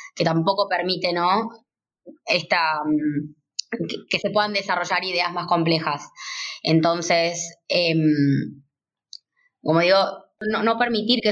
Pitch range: 165-205 Hz